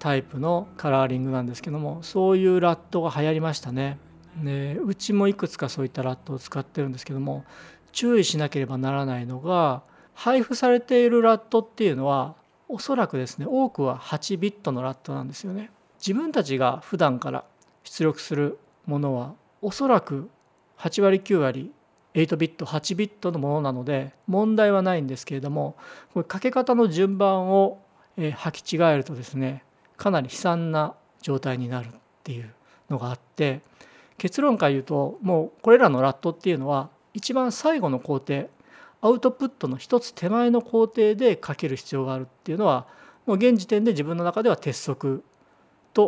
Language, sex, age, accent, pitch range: Japanese, male, 40-59, native, 135-205 Hz